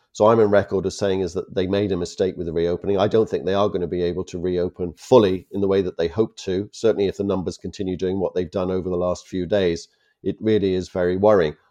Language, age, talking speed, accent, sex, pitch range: English, 40-59, 270 wpm, British, male, 95-115 Hz